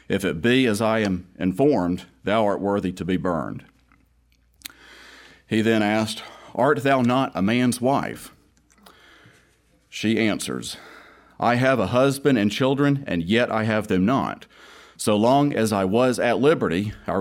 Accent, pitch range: American, 95-125 Hz